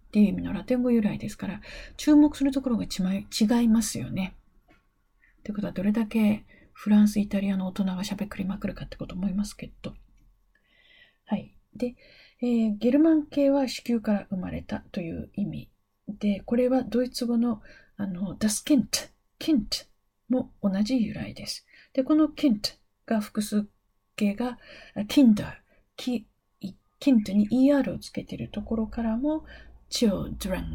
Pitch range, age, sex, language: 200-255 Hz, 40-59, female, Japanese